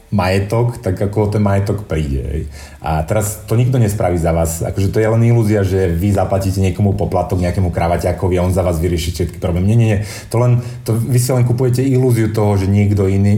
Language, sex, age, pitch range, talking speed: Slovak, male, 30-49, 90-115 Hz, 205 wpm